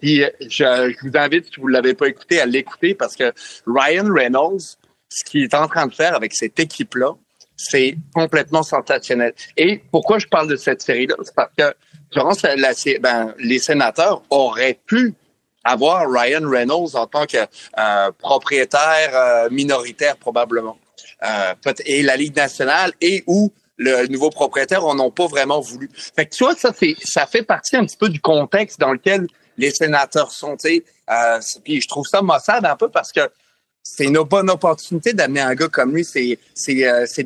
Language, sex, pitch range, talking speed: French, male, 135-180 Hz, 190 wpm